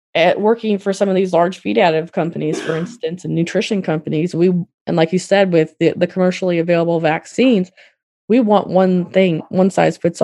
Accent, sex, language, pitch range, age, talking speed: American, female, English, 160-185 Hz, 20-39, 195 wpm